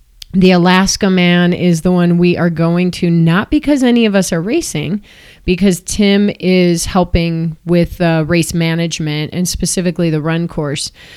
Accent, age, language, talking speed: American, 30-49, English, 160 wpm